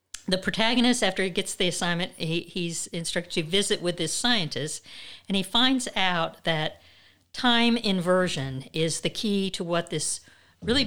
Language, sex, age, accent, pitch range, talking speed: English, female, 50-69, American, 160-200 Hz, 155 wpm